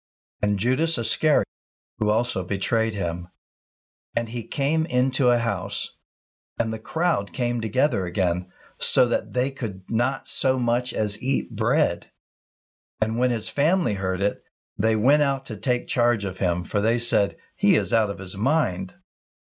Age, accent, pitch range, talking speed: 60-79, American, 95-130 Hz, 160 wpm